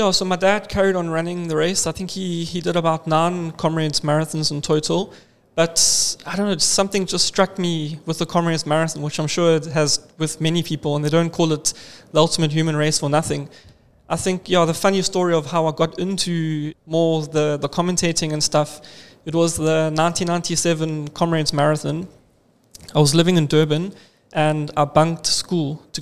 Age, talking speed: 20-39, 200 wpm